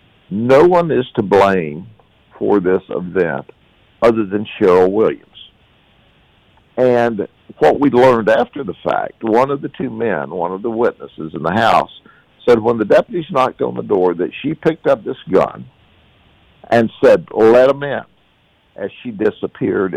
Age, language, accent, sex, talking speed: 60-79, English, American, male, 160 wpm